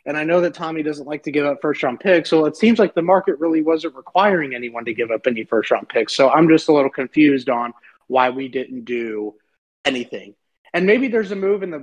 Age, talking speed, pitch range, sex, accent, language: 30-49, 240 wpm, 130-175 Hz, male, American, English